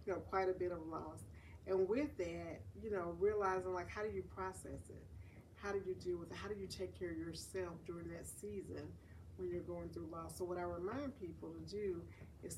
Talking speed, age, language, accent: 230 wpm, 40-59, English, American